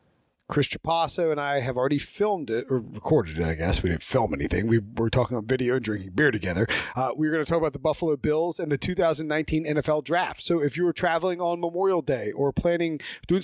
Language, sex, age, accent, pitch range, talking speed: English, male, 30-49, American, 140-170 Hz, 230 wpm